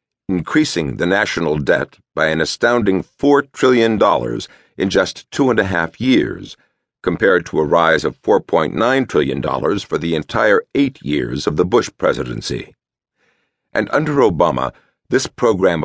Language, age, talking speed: English, 60-79, 140 wpm